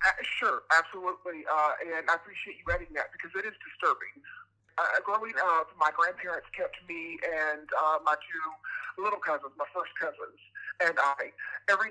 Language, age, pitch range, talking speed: English, 50-69, 150-185 Hz, 165 wpm